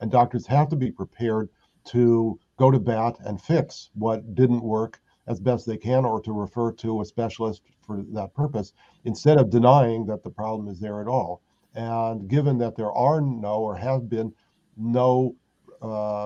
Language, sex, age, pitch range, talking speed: English, male, 50-69, 110-125 Hz, 180 wpm